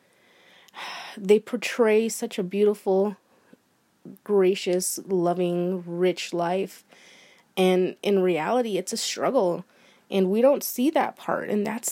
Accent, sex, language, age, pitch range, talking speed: American, female, English, 20-39, 185-240 Hz, 115 wpm